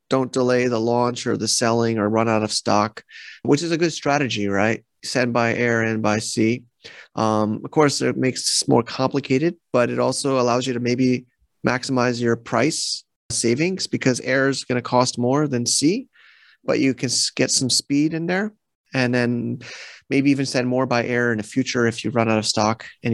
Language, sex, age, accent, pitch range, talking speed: English, male, 30-49, American, 110-130 Hz, 200 wpm